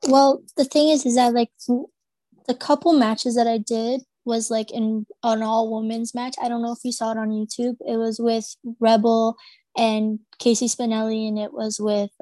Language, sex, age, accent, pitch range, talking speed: English, female, 20-39, American, 215-245 Hz, 190 wpm